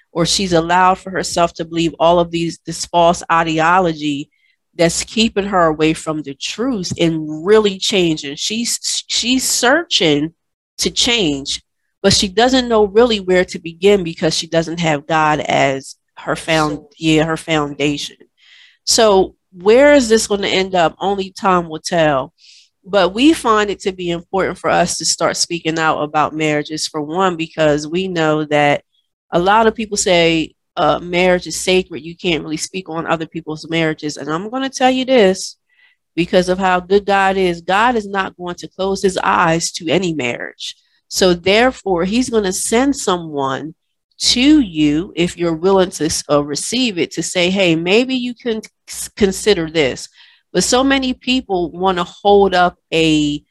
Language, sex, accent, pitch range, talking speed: English, female, American, 160-205 Hz, 175 wpm